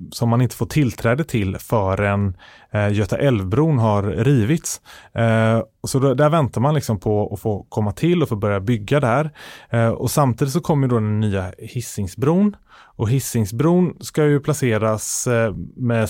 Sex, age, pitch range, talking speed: male, 30-49, 105-140 Hz, 150 wpm